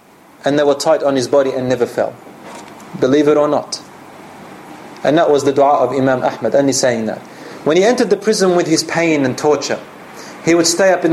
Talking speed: 220 wpm